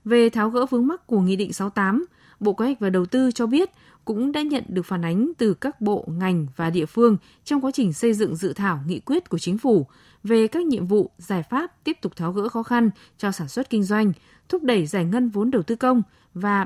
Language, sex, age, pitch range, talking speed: Vietnamese, female, 20-39, 190-240 Hz, 245 wpm